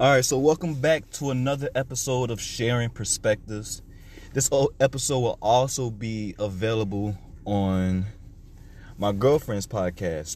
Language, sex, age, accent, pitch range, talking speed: English, male, 20-39, American, 95-120 Hz, 120 wpm